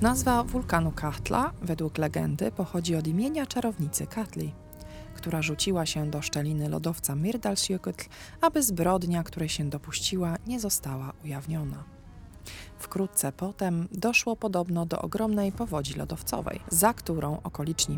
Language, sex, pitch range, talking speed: Polish, female, 145-220 Hz, 120 wpm